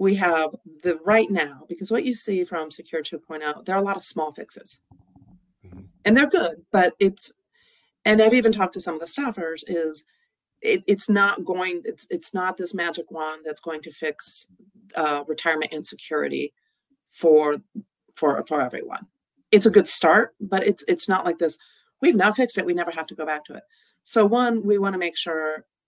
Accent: American